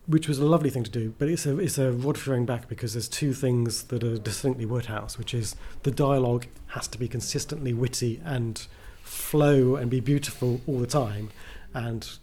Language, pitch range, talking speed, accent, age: English, 120-155 Hz, 200 wpm, British, 30-49